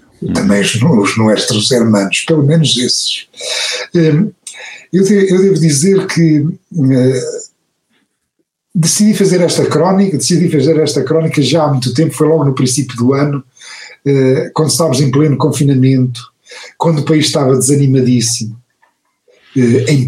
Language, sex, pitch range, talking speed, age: Portuguese, male, 125-165 Hz, 125 wpm, 50-69